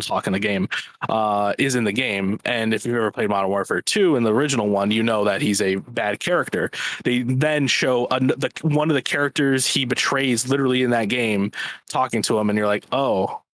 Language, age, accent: English, 20-39, American